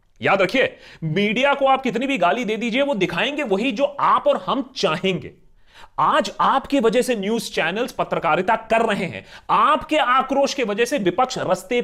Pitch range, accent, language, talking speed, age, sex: 175-265 Hz, native, Hindi, 180 wpm, 30-49, male